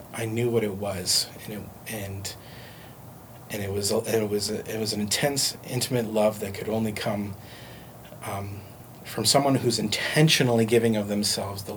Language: English